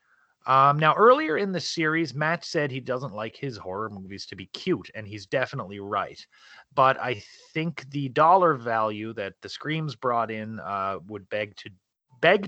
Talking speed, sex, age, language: 180 wpm, male, 30-49, English